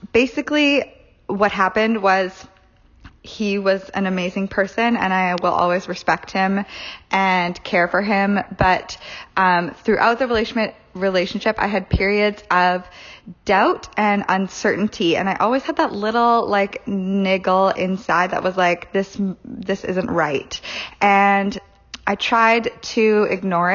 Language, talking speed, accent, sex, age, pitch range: English, 135 wpm, American, female, 20-39, 185-225 Hz